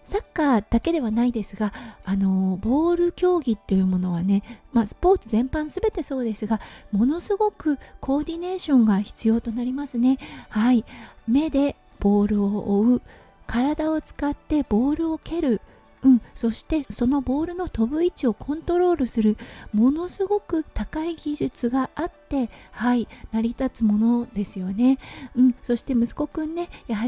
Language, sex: Japanese, female